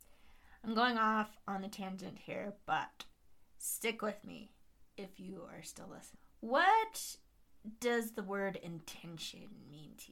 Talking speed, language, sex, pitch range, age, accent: 135 wpm, English, female, 180-230 Hz, 20-39, American